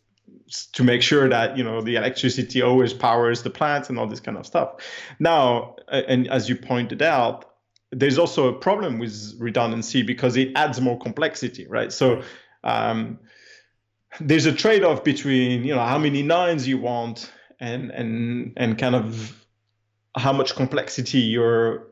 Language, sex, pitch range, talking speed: English, male, 115-135 Hz, 160 wpm